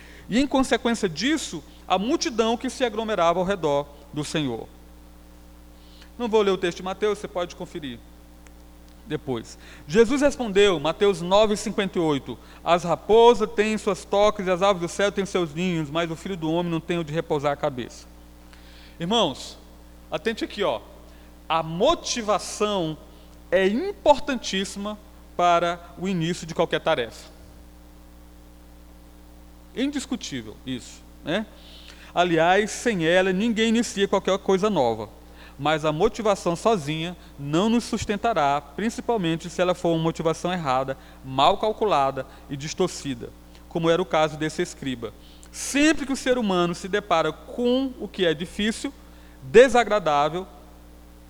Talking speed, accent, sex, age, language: 135 wpm, Brazilian, male, 40-59, Portuguese